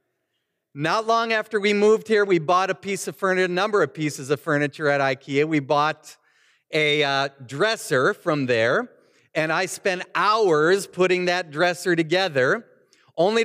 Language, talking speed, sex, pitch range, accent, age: English, 160 wpm, male, 160-225 Hz, American, 40-59